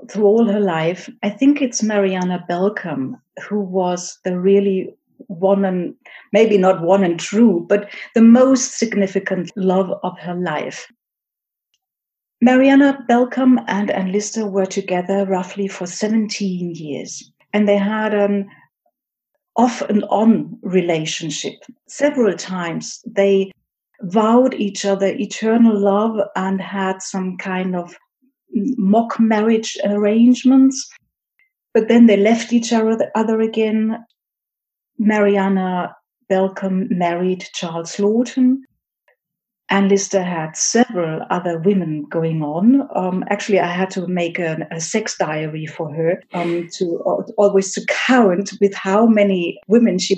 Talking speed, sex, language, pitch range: 130 wpm, female, English, 185-225 Hz